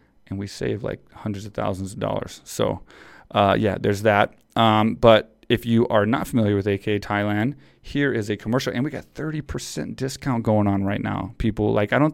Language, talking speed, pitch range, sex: English, 205 wpm, 115-140 Hz, male